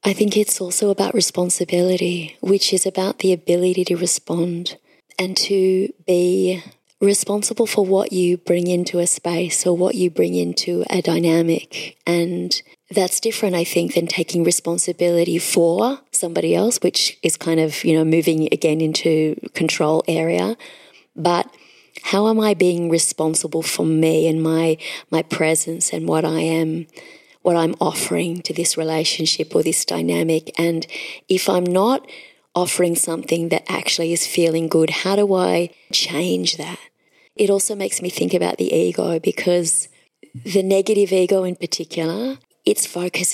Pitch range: 165-185 Hz